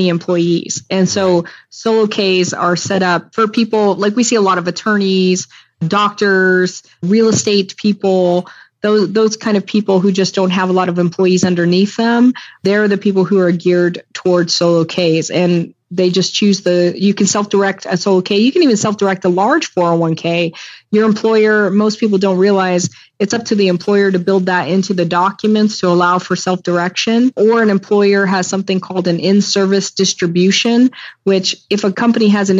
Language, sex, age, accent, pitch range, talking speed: English, female, 20-39, American, 180-205 Hz, 180 wpm